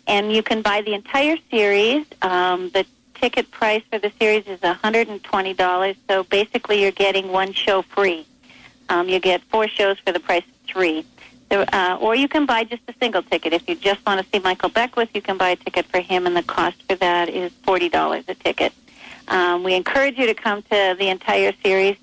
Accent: American